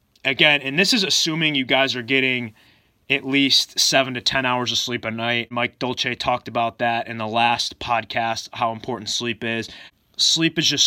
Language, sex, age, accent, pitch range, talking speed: English, male, 20-39, American, 110-130 Hz, 195 wpm